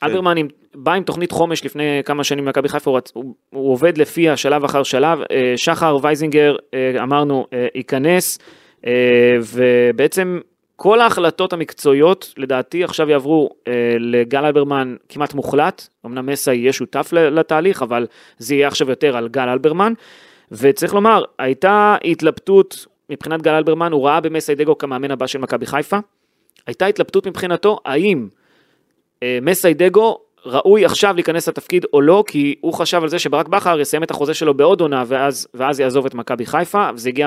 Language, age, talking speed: Hebrew, 30-49, 160 wpm